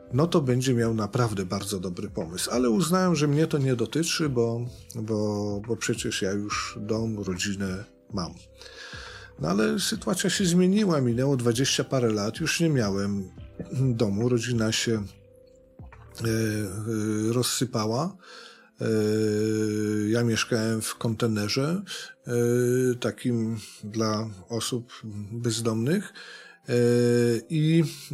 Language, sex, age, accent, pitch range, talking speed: Polish, male, 40-59, native, 105-135 Hz, 115 wpm